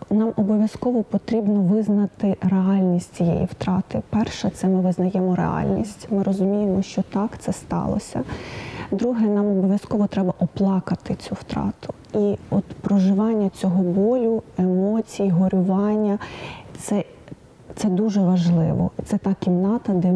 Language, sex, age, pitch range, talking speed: Ukrainian, female, 20-39, 185-215 Hz, 125 wpm